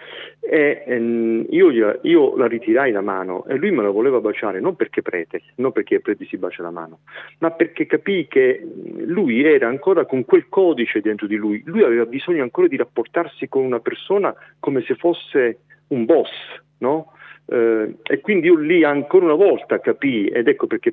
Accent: native